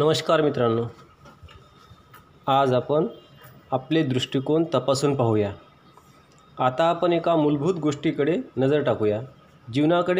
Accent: native